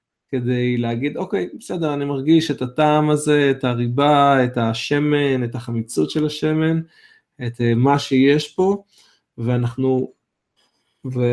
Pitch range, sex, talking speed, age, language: 120-150 Hz, male, 120 wpm, 20-39, Hebrew